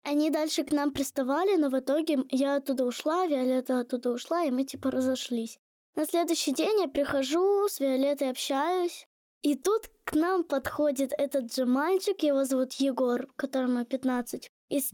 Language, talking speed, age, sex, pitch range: Russian, 160 wpm, 10-29, female, 255-295 Hz